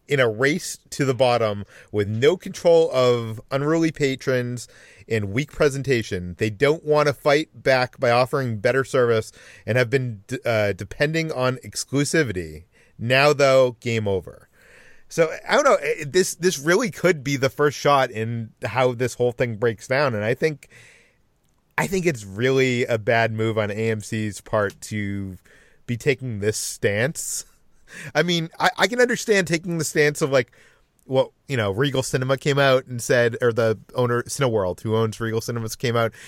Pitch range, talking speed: 110-145 Hz, 170 wpm